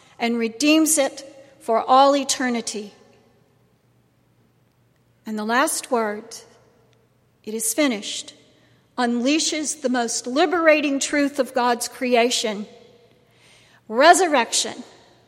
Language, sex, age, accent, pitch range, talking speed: English, female, 50-69, American, 230-300 Hz, 85 wpm